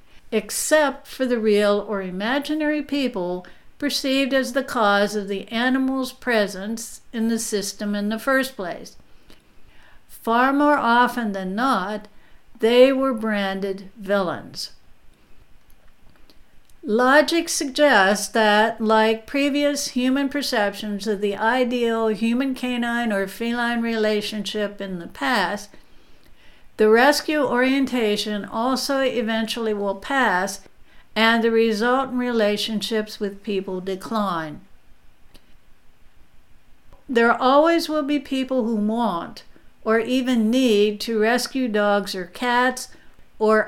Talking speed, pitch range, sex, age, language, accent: 105 wpm, 210-255 Hz, female, 60-79, English, American